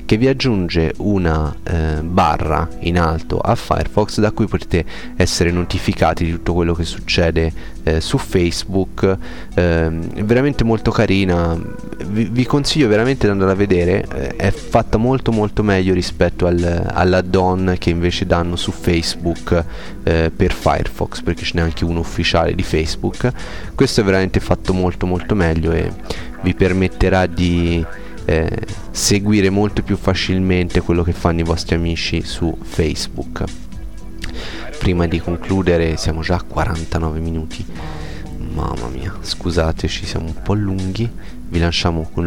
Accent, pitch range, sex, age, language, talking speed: native, 80-100 Hz, male, 30-49, Italian, 145 wpm